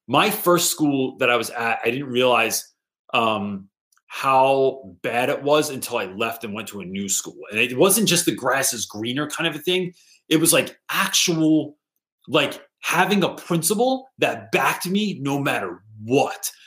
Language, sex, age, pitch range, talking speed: English, male, 30-49, 120-165 Hz, 180 wpm